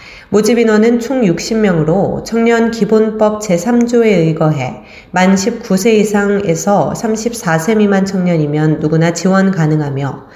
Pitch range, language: 160-215 Hz, Korean